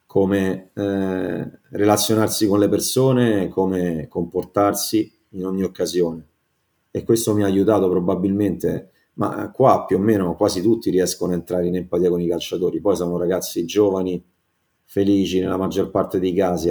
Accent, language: native, Italian